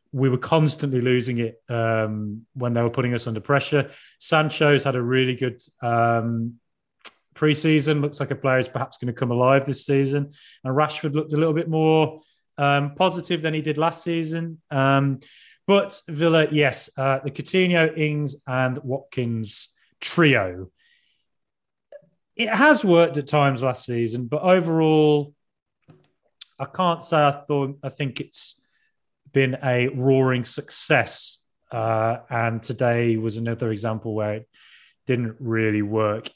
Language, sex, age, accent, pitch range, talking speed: English, male, 30-49, British, 125-155 Hz, 145 wpm